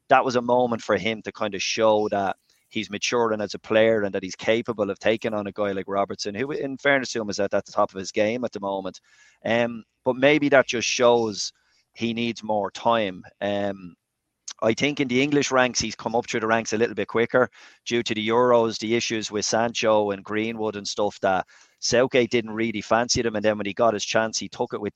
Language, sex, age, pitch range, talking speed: English, male, 30-49, 105-120 Hz, 240 wpm